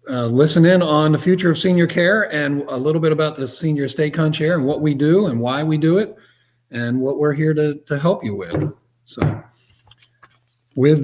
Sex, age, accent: male, 40-59, American